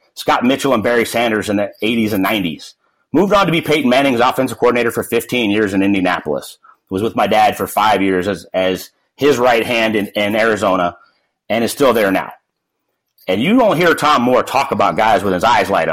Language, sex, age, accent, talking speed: English, male, 30-49, American, 210 wpm